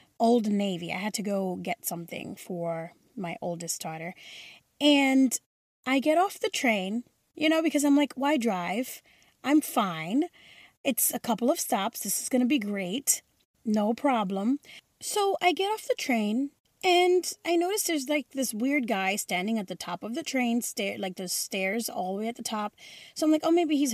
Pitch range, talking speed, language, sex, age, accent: 195-290 Hz, 190 wpm, English, female, 20-39, American